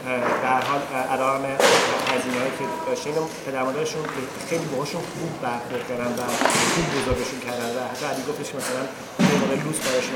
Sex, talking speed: male, 140 wpm